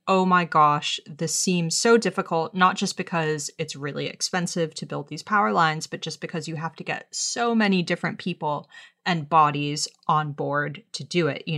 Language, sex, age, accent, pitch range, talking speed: English, female, 30-49, American, 155-205 Hz, 190 wpm